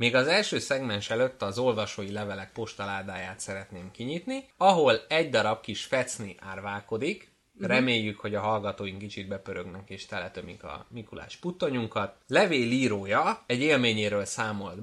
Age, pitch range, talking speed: 20-39, 100-135 Hz, 130 wpm